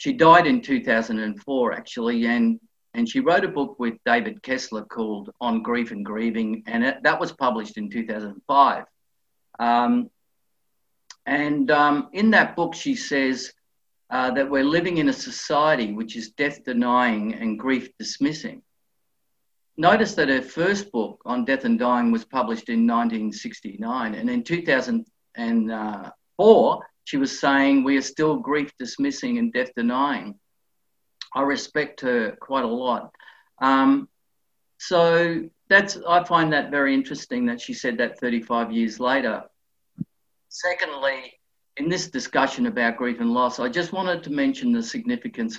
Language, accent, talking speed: English, Australian, 140 wpm